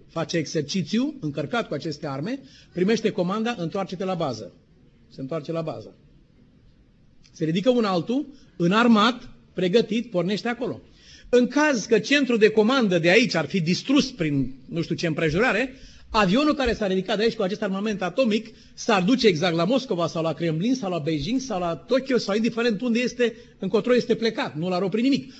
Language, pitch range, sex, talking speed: Romanian, 155-220 Hz, male, 175 wpm